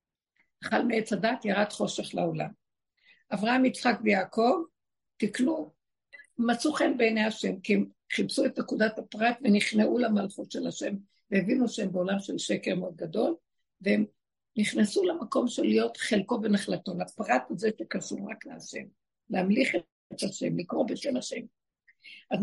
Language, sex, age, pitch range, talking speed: Hebrew, female, 60-79, 215-300 Hz, 135 wpm